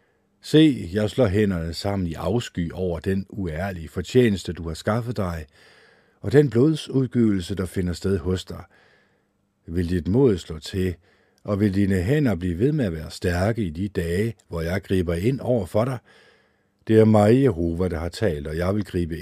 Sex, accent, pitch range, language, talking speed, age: male, native, 85-110 Hz, Danish, 185 wpm, 60-79